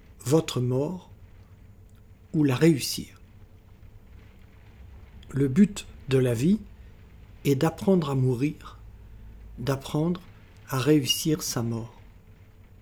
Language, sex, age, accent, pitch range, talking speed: French, male, 60-79, French, 100-160 Hz, 90 wpm